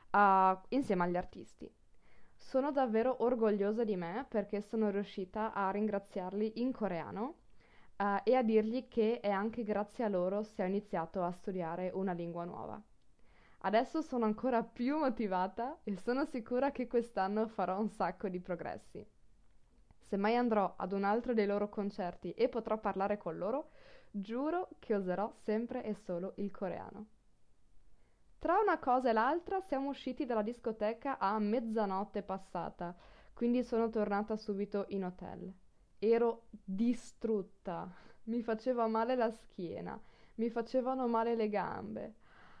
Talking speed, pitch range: 140 wpm, 200-250 Hz